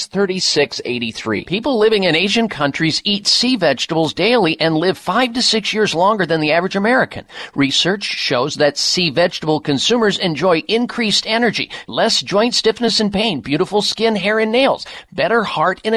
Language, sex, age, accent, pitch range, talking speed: English, male, 50-69, American, 165-225 Hz, 160 wpm